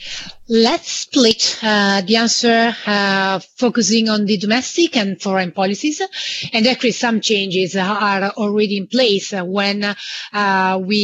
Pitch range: 205-235 Hz